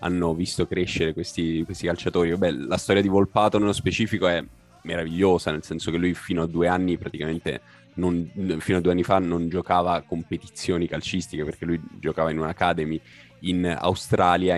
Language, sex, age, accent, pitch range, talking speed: Italian, male, 20-39, native, 80-90 Hz, 160 wpm